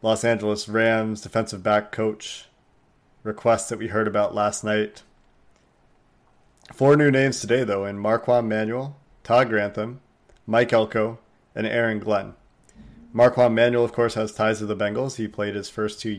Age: 30-49